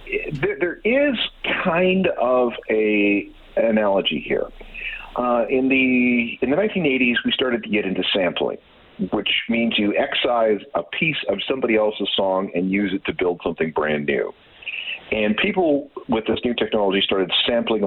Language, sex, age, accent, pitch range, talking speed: English, male, 50-69, American, 105-155 Hz, 150 wpm